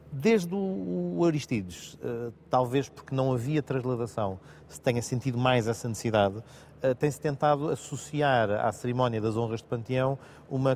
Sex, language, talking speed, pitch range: male, Portuguese, 135 wpm, 110-130 Hz